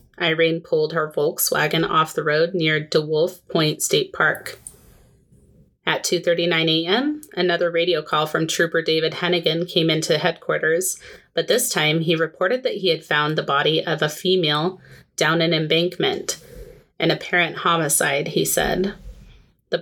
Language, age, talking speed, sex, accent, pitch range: English, 30-49, 145 wpm, female, American, 160-180 Hz